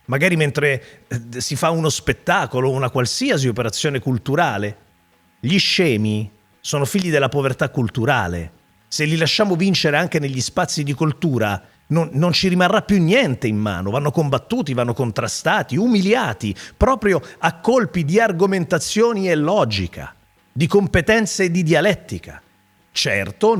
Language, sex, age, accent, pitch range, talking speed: Italian, male, 40-59, native, 120-195 Hz, 135 wpm